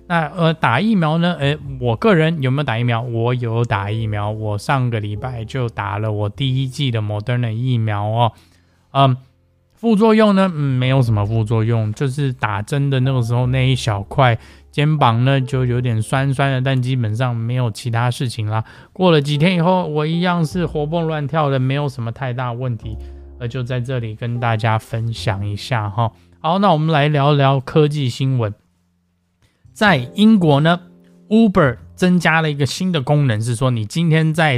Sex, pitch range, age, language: male, 115-150 Hz, 20-39, Chinese